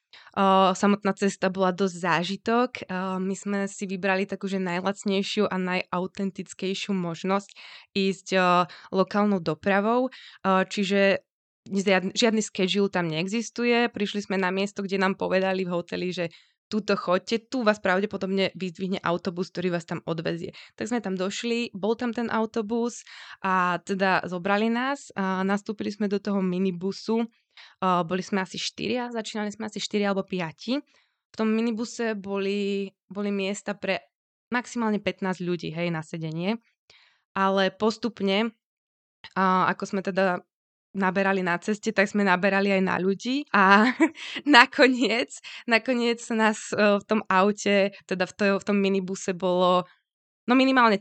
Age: 20-39